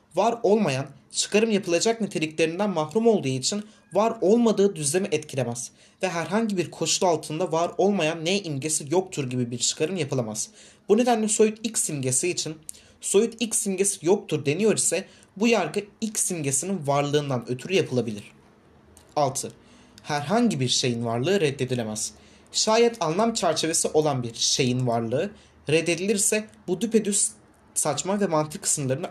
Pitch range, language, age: 130-205 Hz, Turkish, 30-49